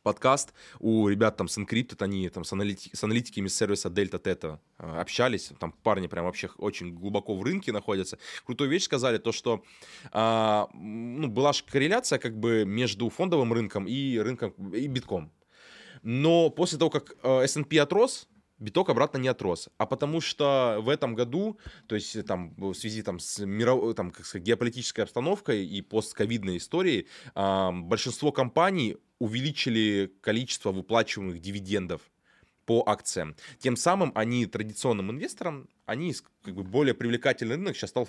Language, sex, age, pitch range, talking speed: Russian, male, 20-39, 100-130 Hz, 155 wpm